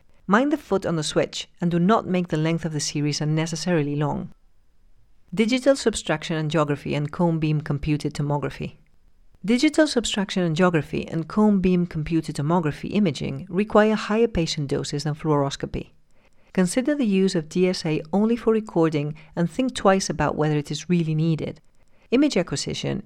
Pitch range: 155-195 Hz